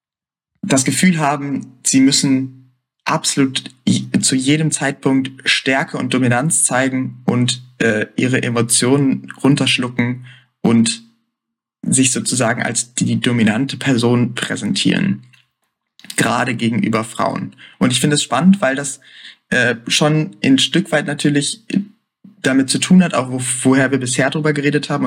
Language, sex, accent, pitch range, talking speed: German, male, German, 125-145 Hz, 130 wpm